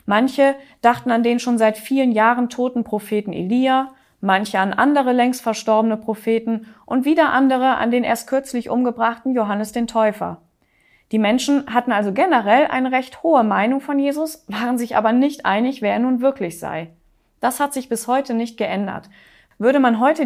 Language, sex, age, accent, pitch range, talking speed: German, female, 20-39, German, 205-250 Hz, 175 wpm